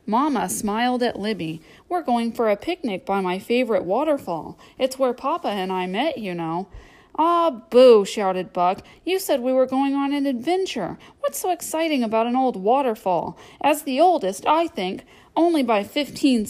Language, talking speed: English, 175 wpm